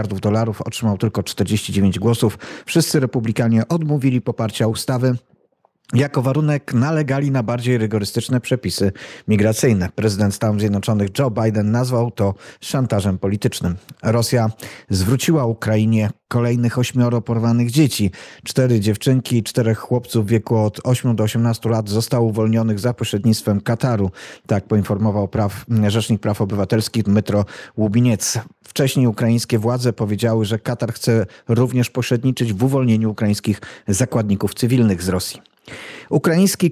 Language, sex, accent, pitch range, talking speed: Polish, male, native, 110-130 Hz, 125 wpm